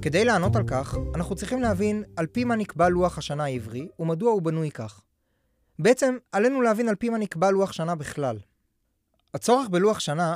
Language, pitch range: Hebrew, 135-200 Hz